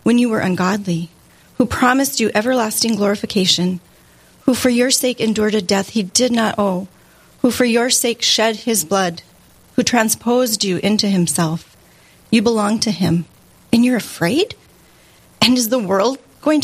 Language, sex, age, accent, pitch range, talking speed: English, female, 30-49, American, 180-230 Hz, 160 wpm